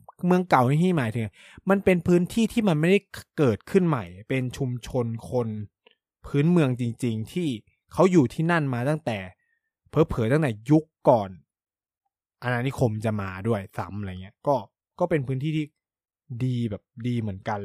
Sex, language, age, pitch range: male, Thai, 20-39, 110-150 Hz